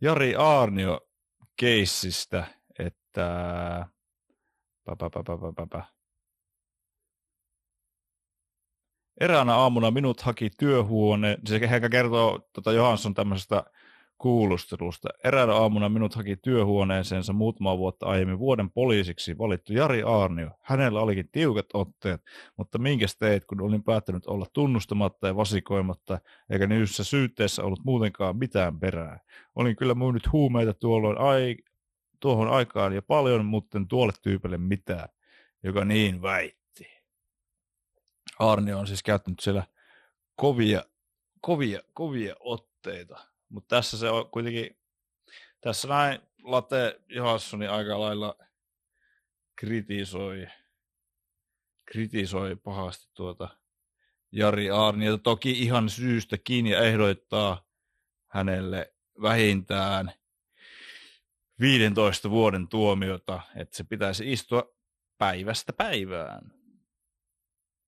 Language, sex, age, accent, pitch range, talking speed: Finnish, male, 30-49, native, 95-115 Hz, 100 wpm